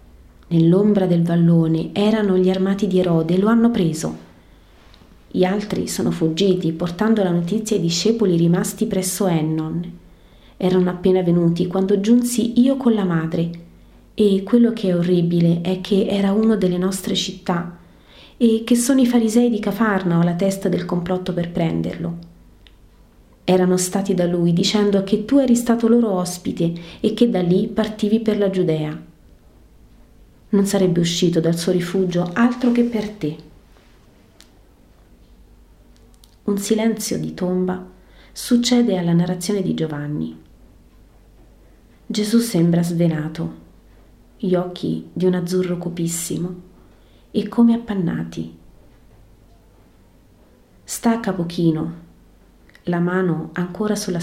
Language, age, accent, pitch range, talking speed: Italian, 30-49, native, 165-205 Hz, 125 wpm